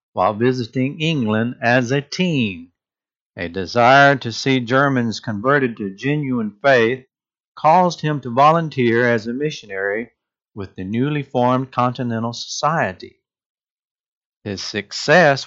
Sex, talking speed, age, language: male, 115 wpm, 60-79, English